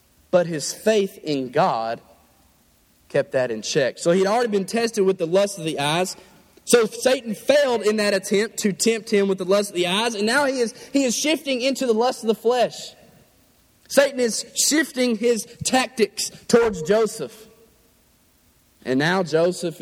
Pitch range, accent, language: 140-225 Hz, American, English